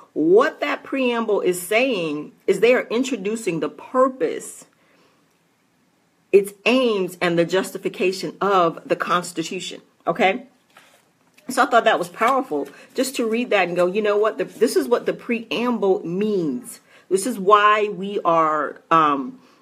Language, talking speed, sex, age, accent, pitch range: English, 145 wpm, female, 40-59, American, 180-255 Hz